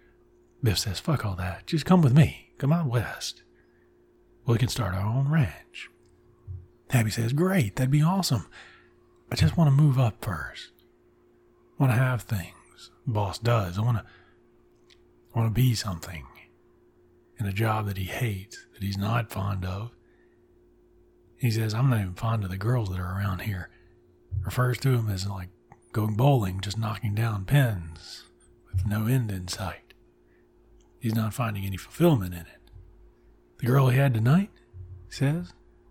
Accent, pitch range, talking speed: American, 95-120 Hz, 170 wpm